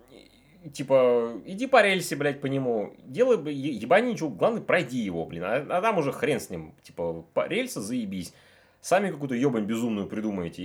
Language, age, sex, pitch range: Russian, 30-49, male, 95-140 Hz